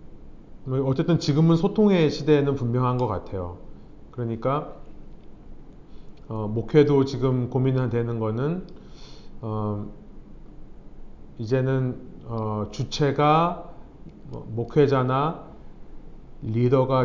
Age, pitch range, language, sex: 40-59, 110-150 Hz, Korean, male